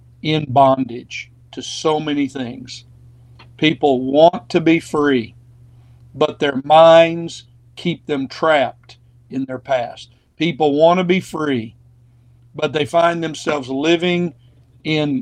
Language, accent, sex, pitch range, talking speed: English, American, male, 125-165 Hz, 120 wpm